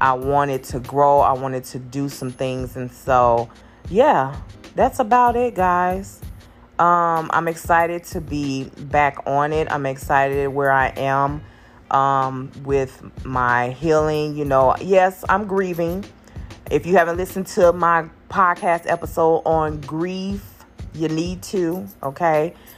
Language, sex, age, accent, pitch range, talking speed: English, female, 20-39, American, 135-160 Hz, 140 wpm